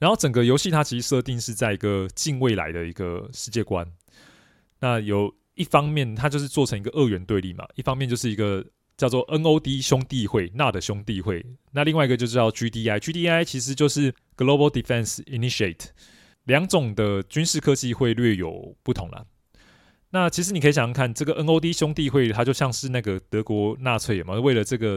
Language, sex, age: Chinese, male, 20-39